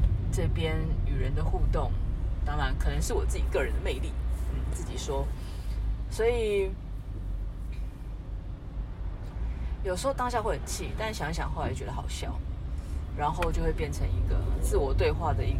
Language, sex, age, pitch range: Chinese, female, 20-39, 85-100 Hz